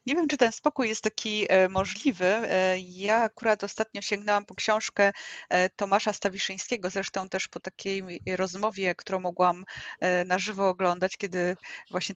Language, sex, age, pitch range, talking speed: Polish, female, 20-39, 190-220 Hz, 140 wpm